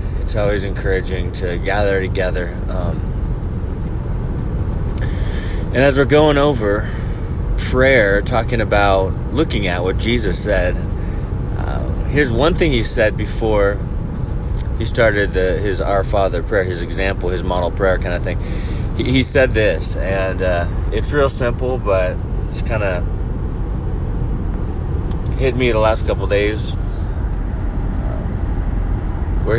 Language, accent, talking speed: English, American, 130 wpm